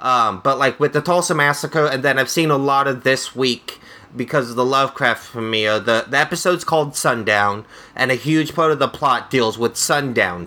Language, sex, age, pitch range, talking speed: English, male, 30-49, 120-150 Hz, 205 wpm